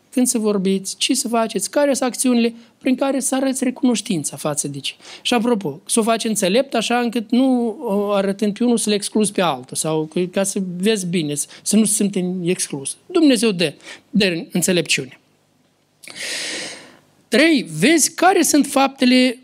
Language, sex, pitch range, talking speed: Romanian, male, 170-255 Hz, 165 wpm